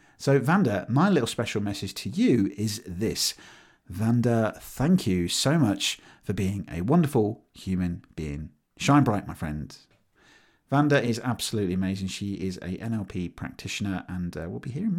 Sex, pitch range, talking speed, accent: male, 95-135 Hz, 155 wpm, British